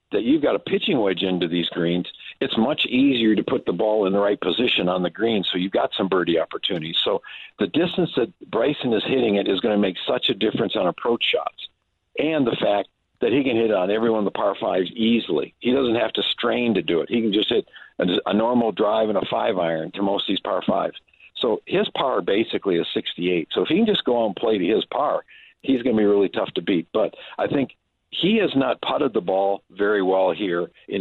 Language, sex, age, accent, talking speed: English, male, 50-69, American, 245 wpm